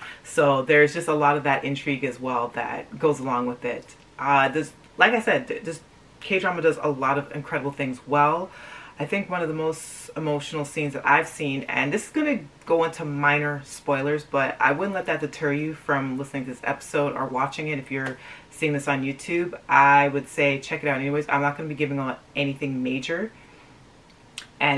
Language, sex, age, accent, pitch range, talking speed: English, female, 30-49, American, 135-155 Hz, 210 wpm